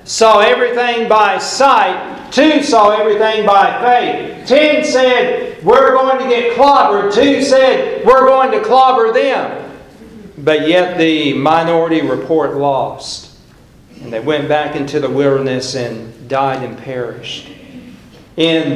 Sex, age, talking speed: male, 50-69, 130 wpm